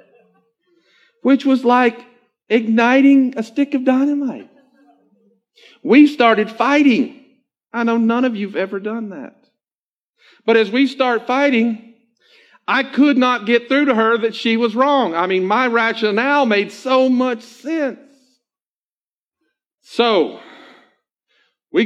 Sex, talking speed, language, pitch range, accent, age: male, 125 wpm, English, 195-265 Hz, American, 50-69